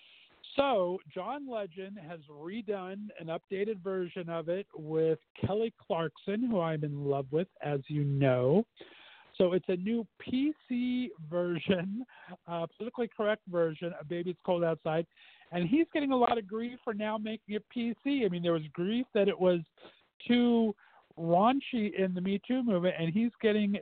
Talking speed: 165 wpm